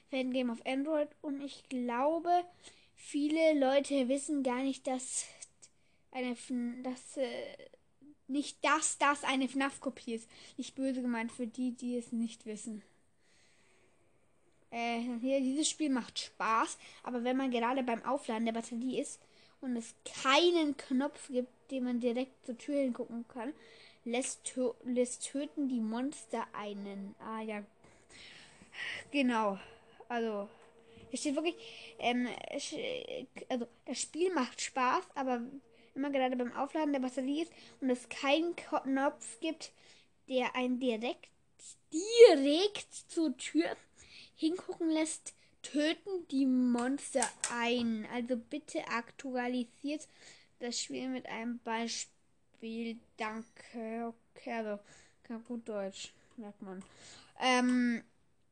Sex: female